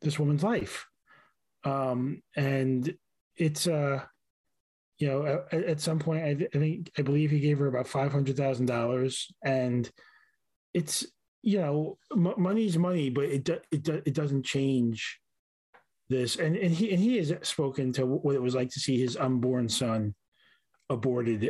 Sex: male